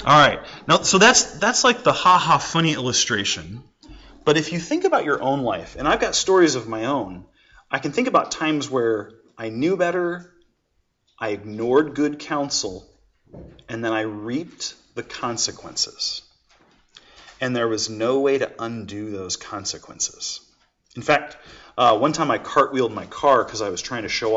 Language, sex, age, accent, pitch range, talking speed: English, male, 30-49, American, 115-150 Hz, 170 wpm